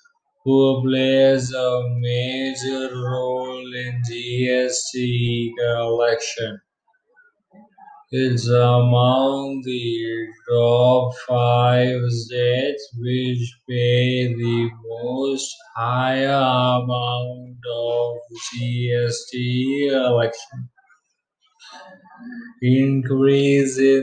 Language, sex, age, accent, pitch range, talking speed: English, male, 20-39, Indian, 120-135 Hz, 60 wpm